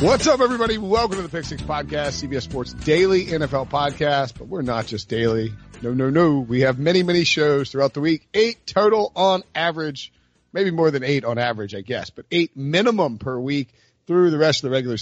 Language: English